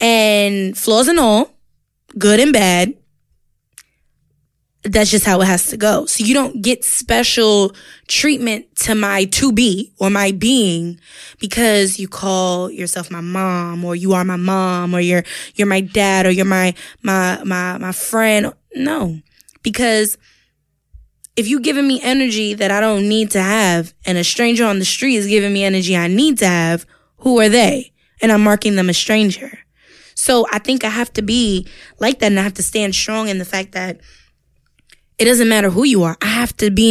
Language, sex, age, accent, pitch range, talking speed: English, female, 10-29, American, 185-230 Hz, 185 wpm